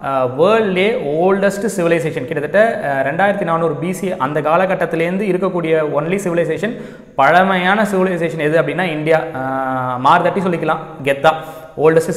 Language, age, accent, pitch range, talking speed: Tamil, 20-39, native, 145-190 Hz, 105 wpm